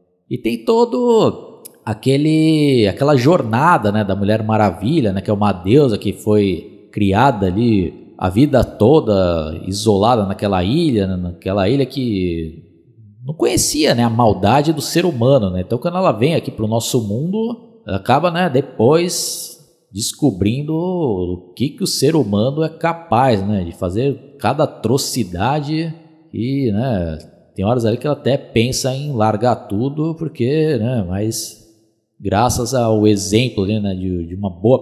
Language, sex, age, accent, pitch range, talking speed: Portuguese, male, 20-39, Brazilian, 95-140 Hz, 145 wpm